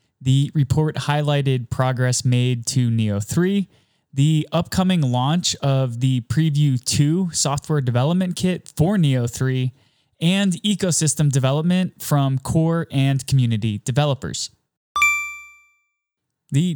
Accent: American